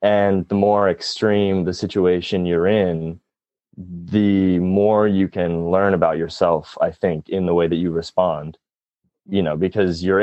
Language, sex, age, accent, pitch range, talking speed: English, male, 20-39, American, 85-100 Hz, 160 wpm